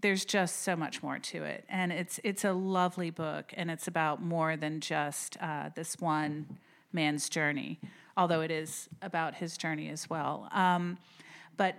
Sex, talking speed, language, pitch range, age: female, 175 wpm, English, 165-195 Hz, 40-59